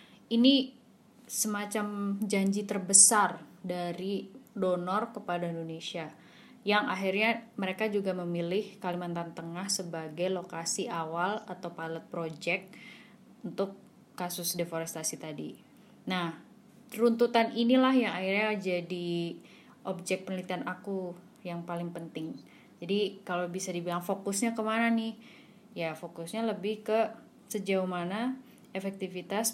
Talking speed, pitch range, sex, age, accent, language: 105 wpm, 175-215 Hz, female, 20-39, native, Indonesian